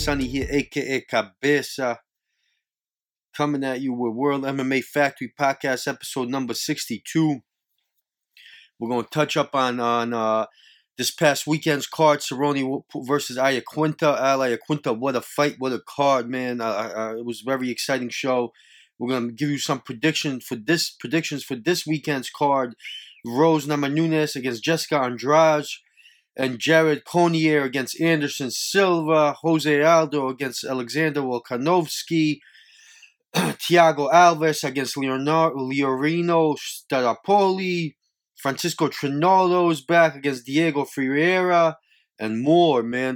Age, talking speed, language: 20-39, 130 wpm, English